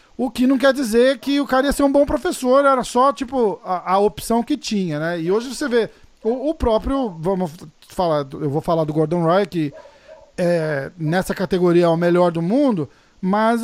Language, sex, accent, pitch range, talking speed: Portuguese, male, Brazilian, 170-240 Hz, 205 wpm